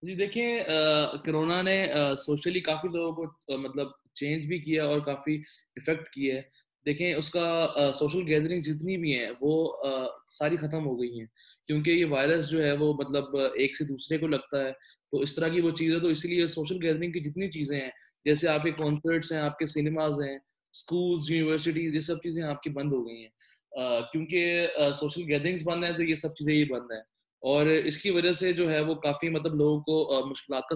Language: Urdu